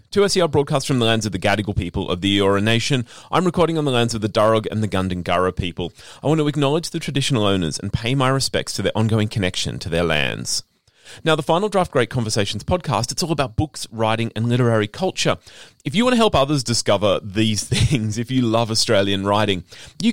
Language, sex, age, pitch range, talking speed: English, male, 30-49, 100-140 Hz, 220 wpm